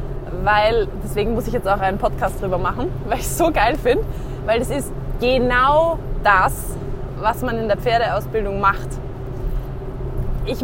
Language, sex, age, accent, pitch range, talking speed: German, female, 20-39, German, 195-285 Hz, 160 wpm